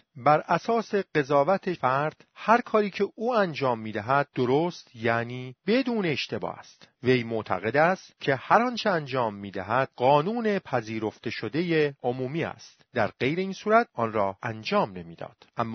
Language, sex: Persian, male